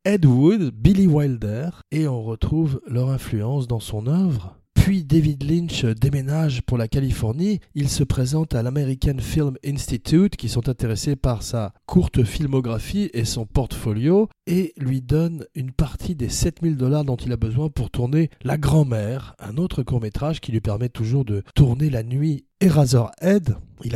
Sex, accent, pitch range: male, French, 120-155 Hz